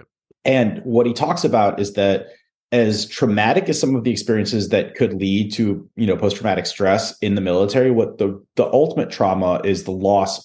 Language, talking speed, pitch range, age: English, 190 wpm, 100-125 Hz, 30-49